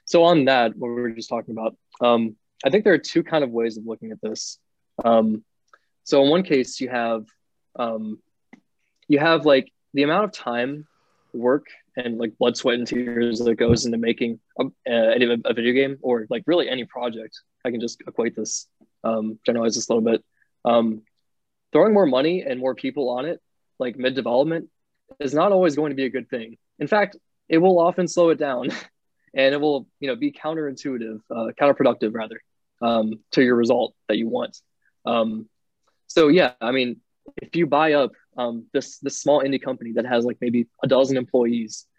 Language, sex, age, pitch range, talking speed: English, male, 20-39, 115-140 Hz, 195 wpm